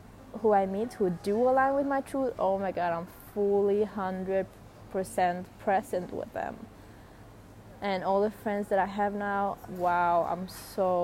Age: 20-39